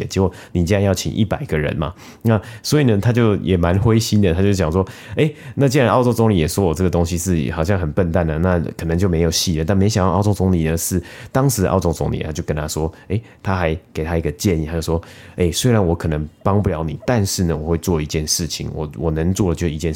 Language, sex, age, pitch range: Chinese, male, 30-49, 80-100 Hz